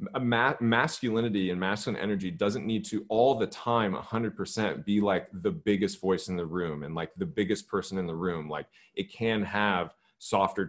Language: English